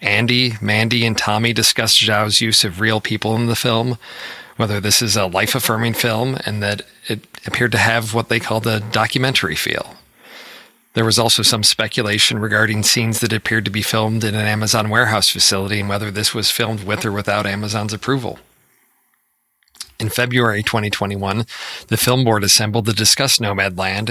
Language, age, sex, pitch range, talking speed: English, 40-59, male, 105-120 Hz, 170 wpm